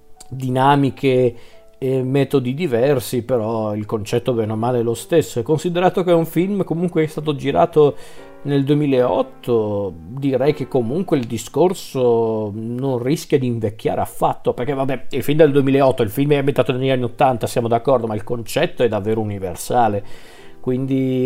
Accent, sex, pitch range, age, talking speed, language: native, male, 110-140 Hz, 40-59, 160 wpm, Italian